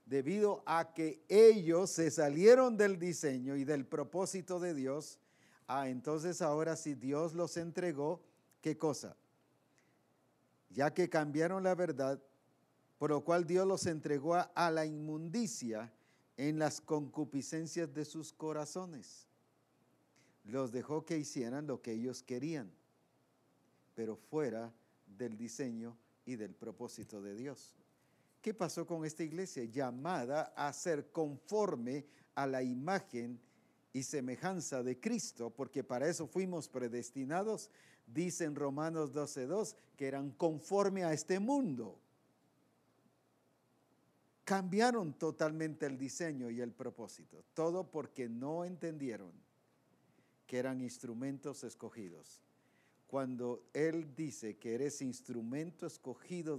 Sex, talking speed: male, 120 wpm